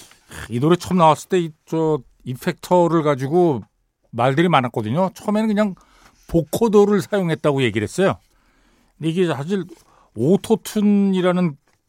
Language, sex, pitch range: Korean, male, 135-205 Hz